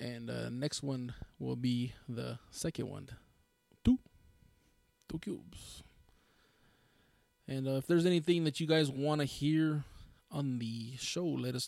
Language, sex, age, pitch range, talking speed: English, male, 20-39, 125-160 Hz, 140 wpm